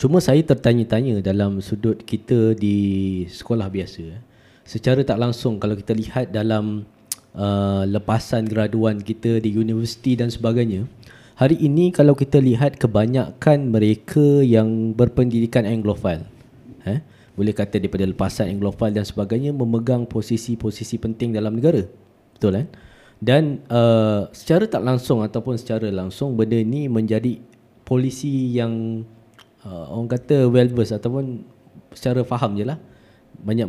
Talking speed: 125 wpm